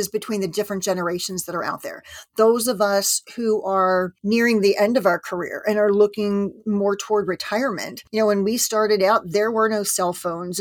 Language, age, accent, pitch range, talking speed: English, 40-59, American, 195-225 Hz, 205 wpm